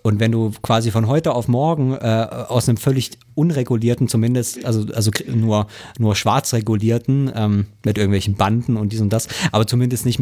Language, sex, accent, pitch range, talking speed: German, male, German, 105-125 Hz, 180 wpm